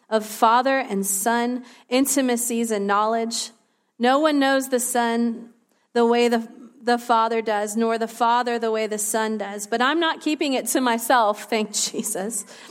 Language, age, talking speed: English, 40-59, 165 wpm